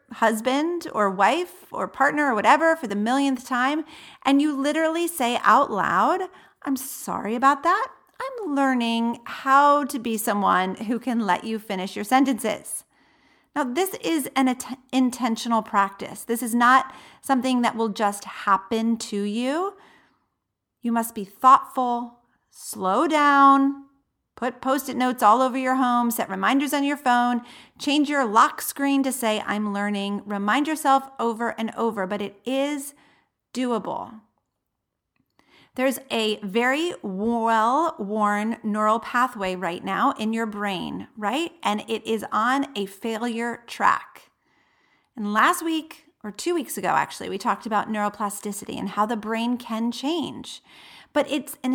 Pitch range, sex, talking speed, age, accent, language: 220-275 Hz, female, 145 wpm, 40-59, American, English